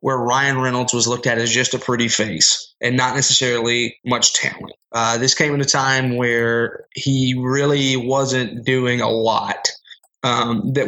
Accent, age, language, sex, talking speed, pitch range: American, 20-39, English, male, 170 wpm, 120-135 Hz